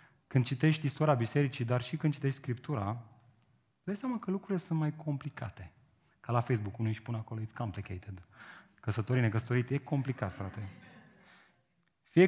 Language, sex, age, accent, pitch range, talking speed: Romanian, male, 30-49, native, 115-165 Hz, 160 wpm